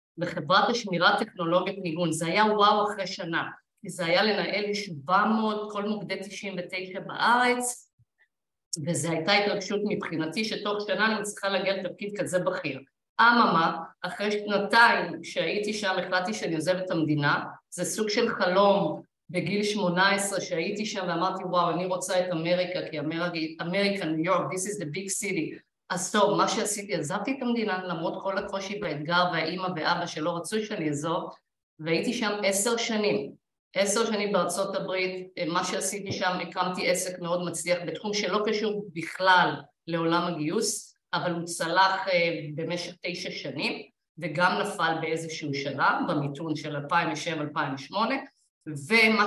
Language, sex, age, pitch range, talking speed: Hebrew, female, 50-69, 170-205 Hz, 140 wpm